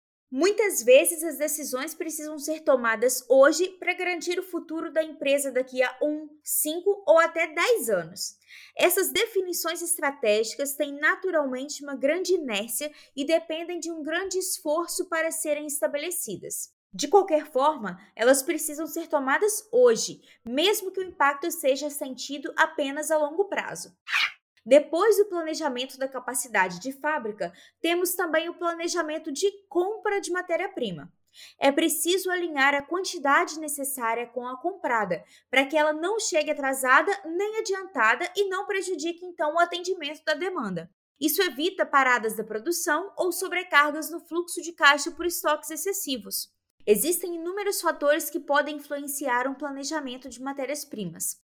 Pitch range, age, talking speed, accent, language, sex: 280-350 Hz, 20-39, 140 wpm, Brazilian, Portuguese, female